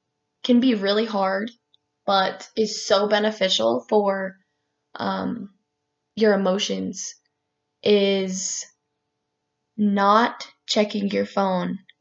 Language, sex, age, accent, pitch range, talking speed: English, female, 10-29, American, 175-215 Hz, 85 wpm